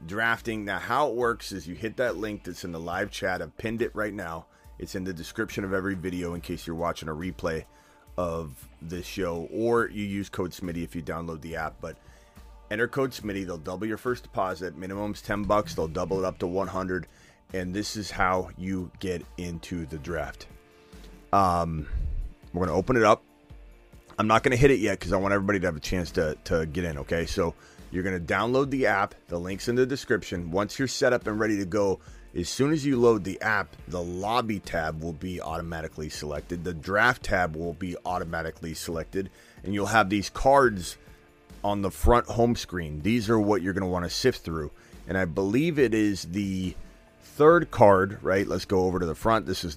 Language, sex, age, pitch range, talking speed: English, male, 30-49, 85-105 Hz, 215 wpm